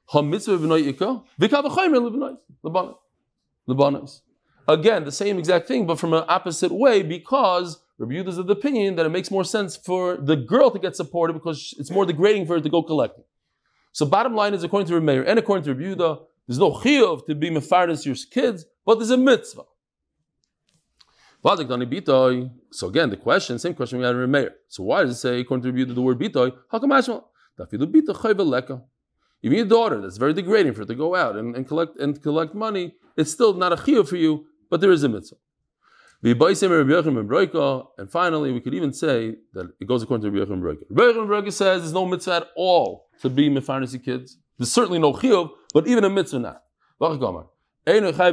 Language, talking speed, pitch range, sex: English, 175 wpm, 135-190 Hz, male